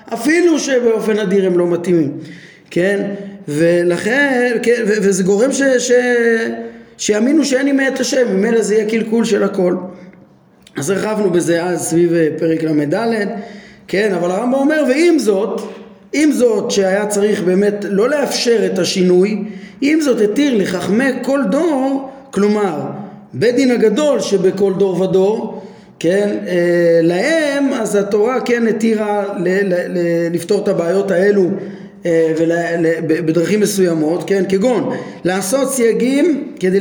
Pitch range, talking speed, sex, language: 185-235 Hz, 130 wpm, male, Hebrew